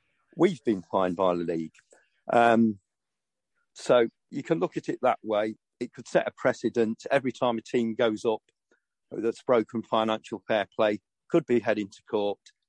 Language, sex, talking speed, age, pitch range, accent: English, male, 170 wpm, 50-69, 105-150 Hz, British